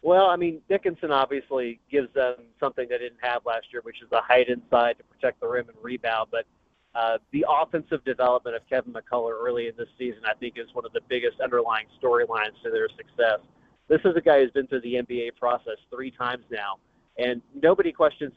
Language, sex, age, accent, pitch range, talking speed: English, male, 30-49, American, 125-150 Hz, 210 wpm